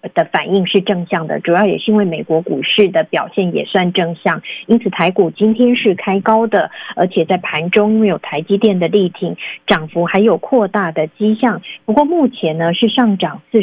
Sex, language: female, Chinese